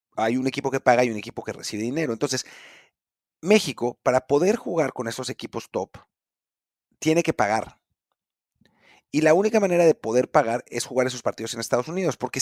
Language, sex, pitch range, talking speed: Spanish, male, 125-165 Hz, 185 wpm